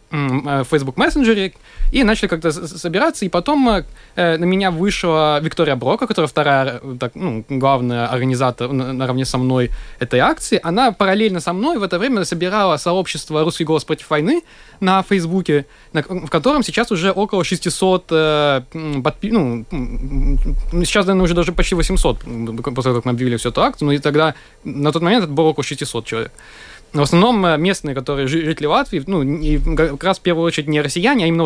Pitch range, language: 140-190 Hz, Russian